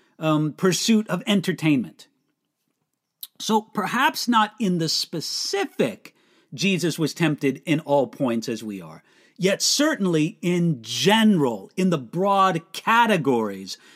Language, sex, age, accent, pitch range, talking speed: English, male, 50-69, American, 155-220 Hz, 115 wpm